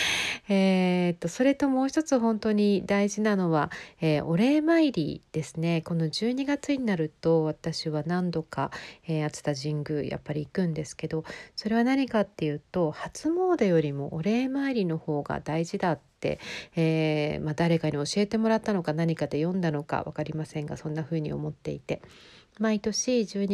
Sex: female